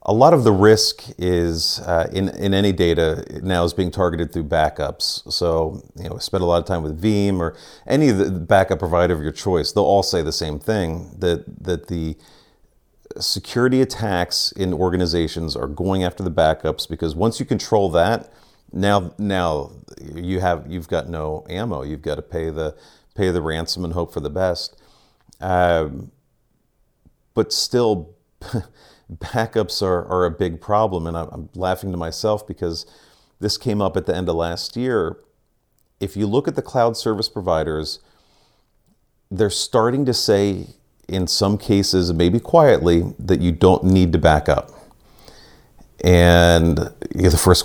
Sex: male